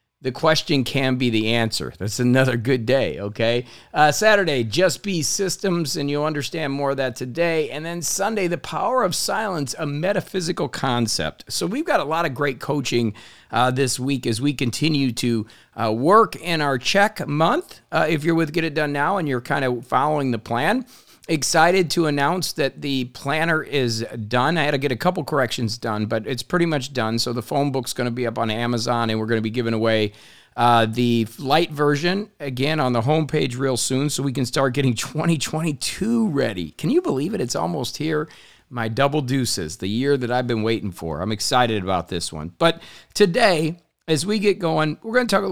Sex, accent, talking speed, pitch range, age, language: male, American, 205 wpm, 115-160 Hz, 50-69, English